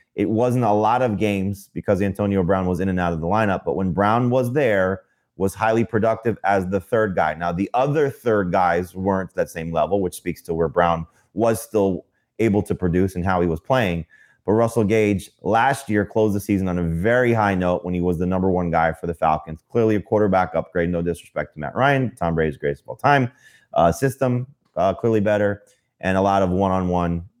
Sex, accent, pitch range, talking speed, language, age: male, American, 90-110 Hz, 220 wpm, English, 30-49